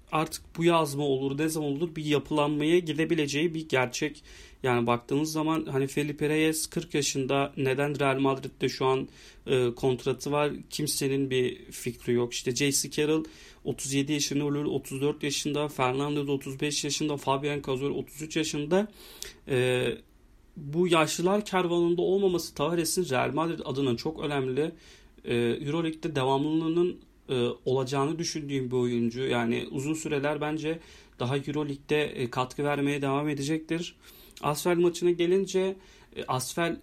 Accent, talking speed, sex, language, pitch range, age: native, 125 wpm, male, Turkish, 135-165 Hz, 40-59